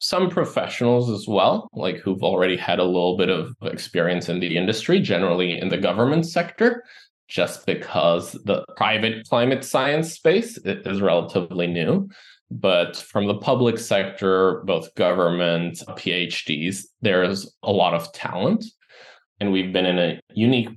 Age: 20-39